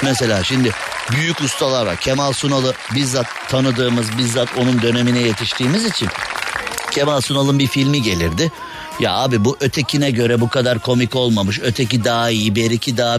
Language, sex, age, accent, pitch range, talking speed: Turkish, male, 60-79, native, 120-145 Hz, 145 wpm